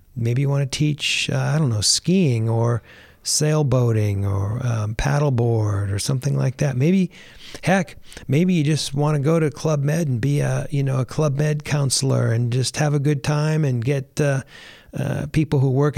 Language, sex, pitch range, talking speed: English, male, 120-145 Hz, 195 wpm